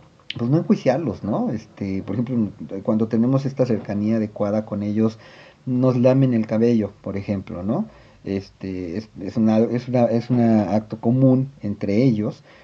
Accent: Mexican